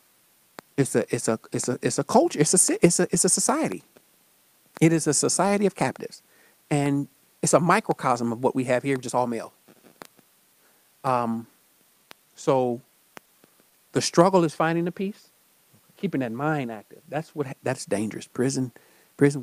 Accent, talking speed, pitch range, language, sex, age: American, 160 wpm, 140-215 Hz, English, male, 50-69